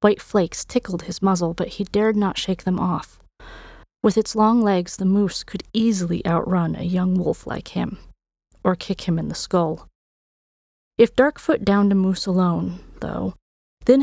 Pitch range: 180-215 Hz